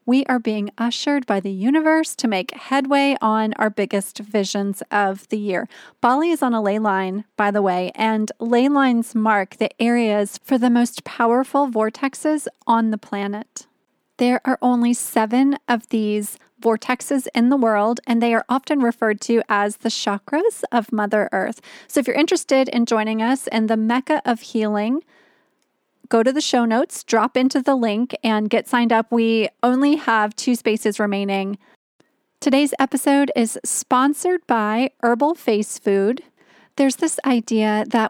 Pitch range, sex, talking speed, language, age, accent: 215-260 Hz, female, 165 wpm, English, 30-49, American